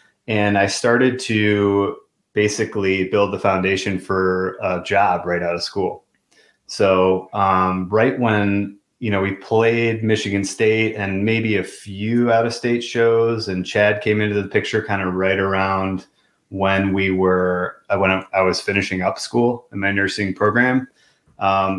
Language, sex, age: English, male, 30-49